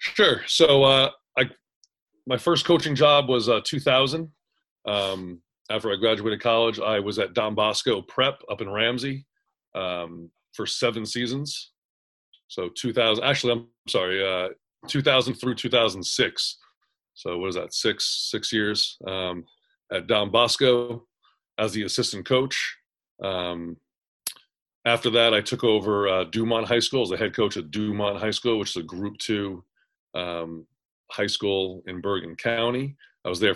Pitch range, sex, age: 95-125 Hz, male, 30-49